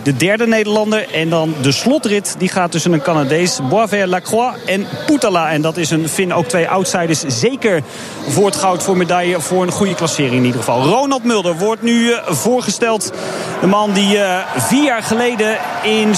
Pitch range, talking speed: 175-215 Hz, 180 wpm